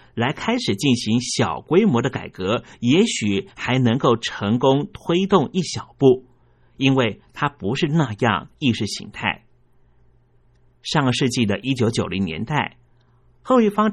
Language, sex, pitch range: Chinese, male, 120-150 Hz